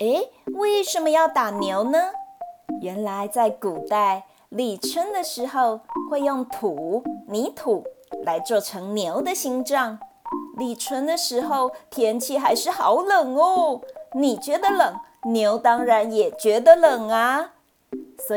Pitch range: 220-330 Hz